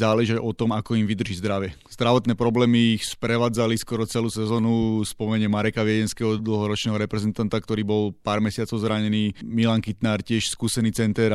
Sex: male